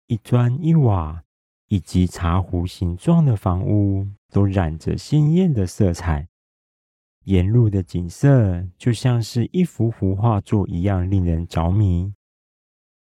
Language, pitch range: Chinese, 90-115 Hz